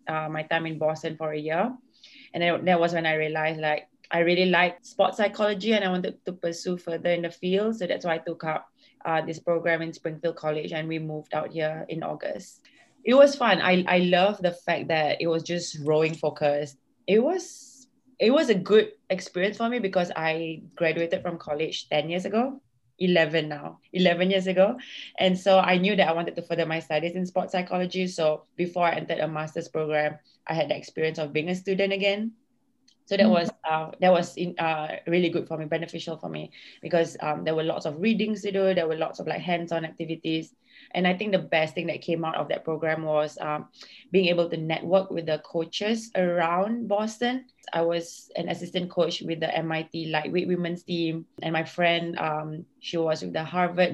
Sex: female